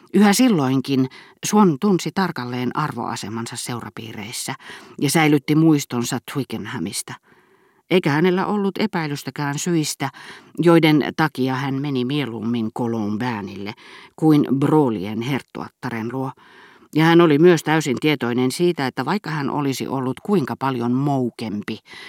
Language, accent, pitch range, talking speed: Finnish, native, 120-160 Hz, 115 wpm